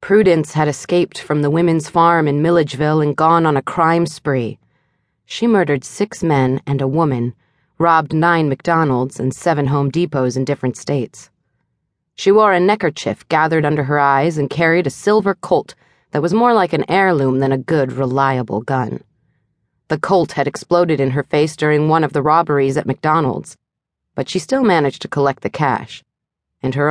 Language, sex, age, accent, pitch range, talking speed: English, female, 30-49, American, 135-170 Hz, 180 wpm